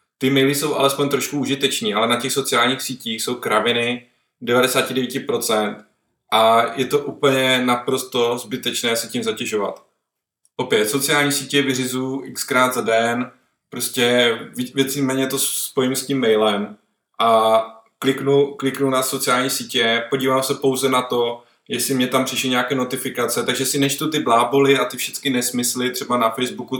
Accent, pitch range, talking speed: native, 125-140 Hz, 150 wpm